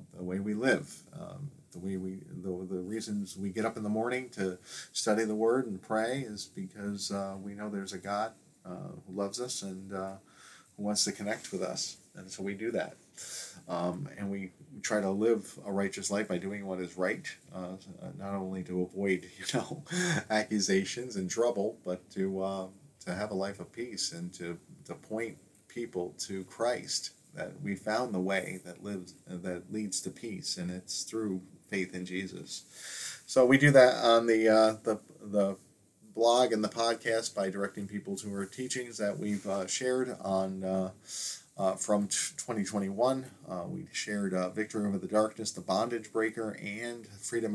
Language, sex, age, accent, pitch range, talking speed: English, male, 40-59, American, 95-115 Hz, 185 wpm